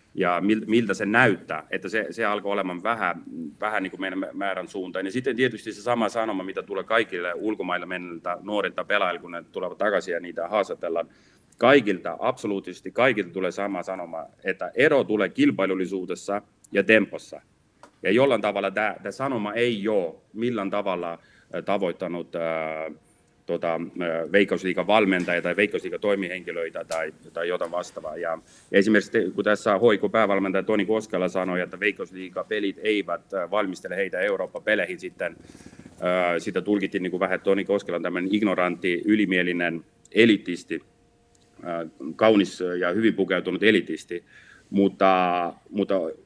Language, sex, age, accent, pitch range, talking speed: Finnish, male, 30-49, native, 90-110 Hz, 135 wpm